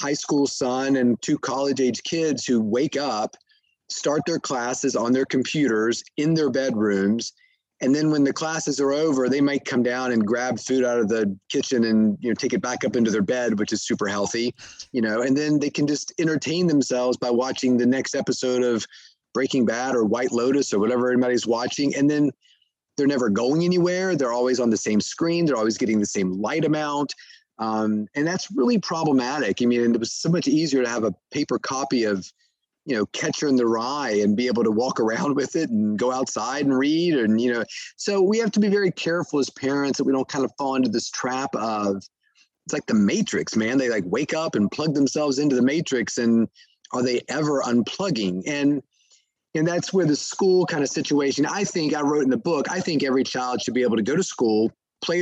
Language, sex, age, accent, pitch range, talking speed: English, male, 30-49, American, 120-150 Hz, 220 wpm